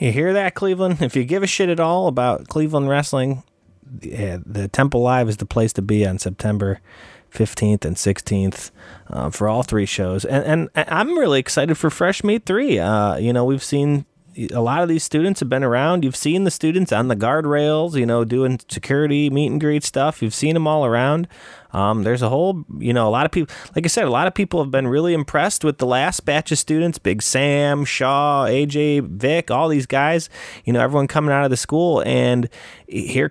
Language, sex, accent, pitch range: English, male, American, 120-165 Hz